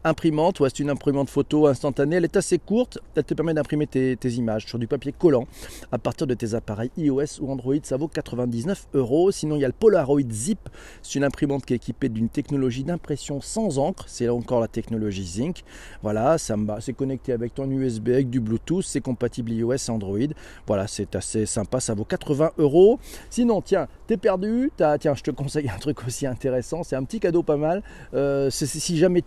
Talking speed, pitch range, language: 210 wpm, 125-165 Hz, French